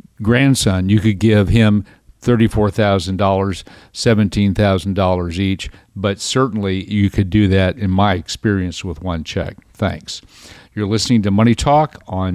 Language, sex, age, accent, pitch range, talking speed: English, male, 50-69, American, 95-115 Hz, 130 wpm